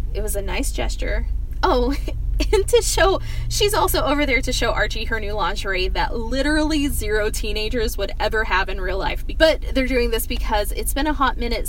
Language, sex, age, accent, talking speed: English, female, 10-29, American, 200 wpm